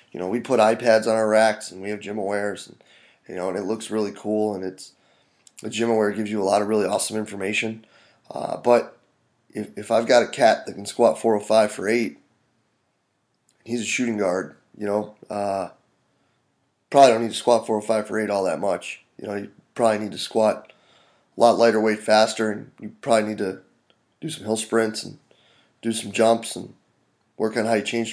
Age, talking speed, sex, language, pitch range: 20-39, 205 wpm, male, English, 105-115 Hz